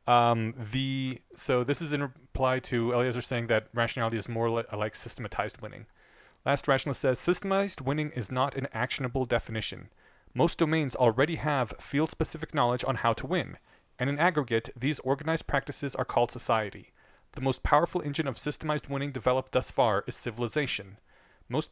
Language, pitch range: English, 125-155 Hz